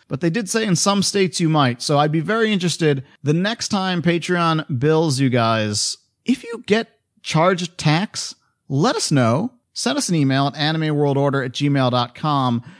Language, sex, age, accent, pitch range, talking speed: English, male, 40-59, American, 135-175 Hz, 175 wpm